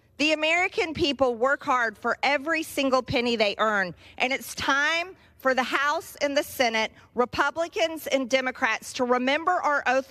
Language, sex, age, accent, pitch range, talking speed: English, female, 40-59, American, 235-295 Hz, 160 wpm